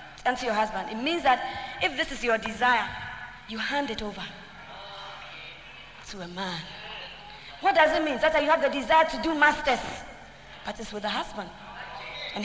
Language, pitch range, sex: English, 230-305 Hz, female